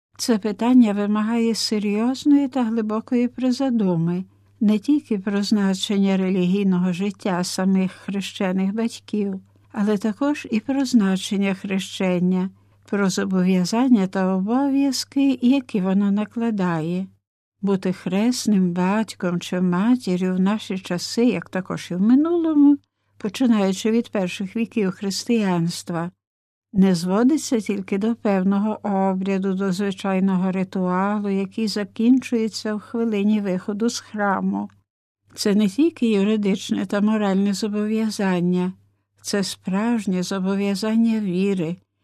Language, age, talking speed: Ukrainian, 60-79, 105 wpm